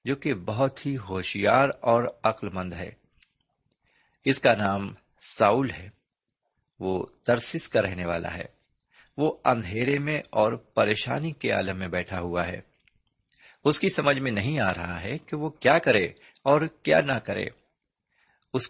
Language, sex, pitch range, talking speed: Urdu, male, 95-140 Hz, 155 wpm